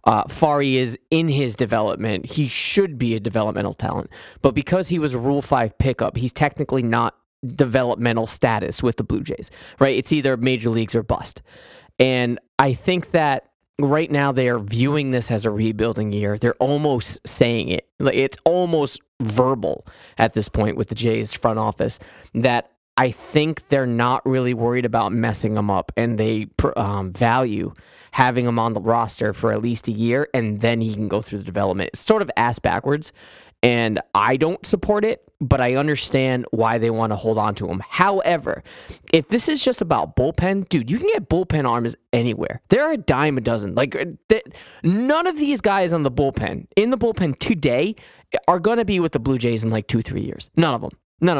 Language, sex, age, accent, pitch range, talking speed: English, male, 20-39, American, 115-155 Hz, 195 wpm